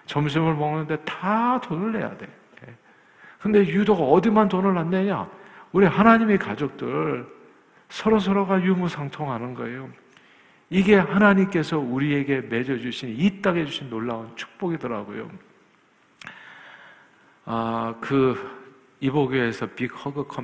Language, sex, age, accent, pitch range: Korean, male, 50-69, native, 115-185 Hz